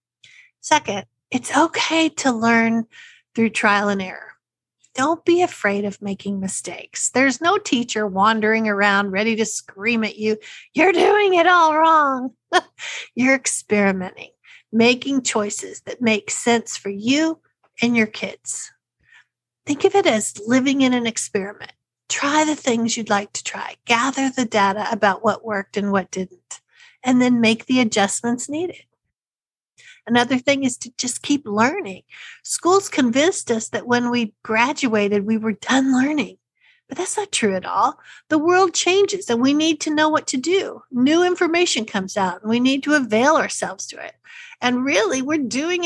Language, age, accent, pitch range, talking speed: English, 50-69, American, 215-305 Hz, 160 wpm